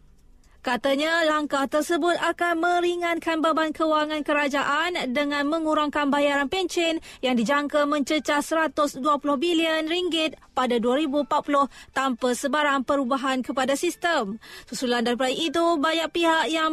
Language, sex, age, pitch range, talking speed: Malay, female, 20-39, 275-320 Hz, 110 wpm